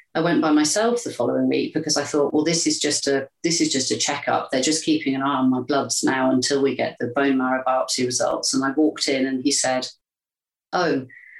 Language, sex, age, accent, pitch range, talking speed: English, female, 40-59, British, 135-165 Hz, 235 wpm